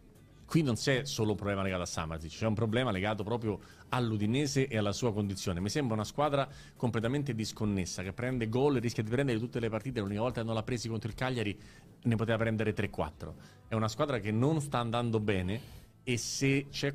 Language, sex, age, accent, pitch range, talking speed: Italian, male, 30-49, native, 110-140 Hz, 210 wpm